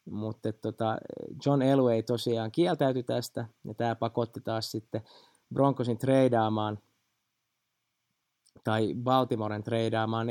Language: Finnish